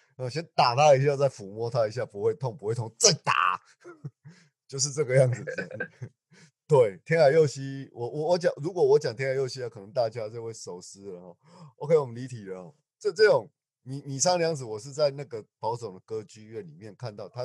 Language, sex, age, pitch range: Chinese, male, 20-39, 115-150 Hz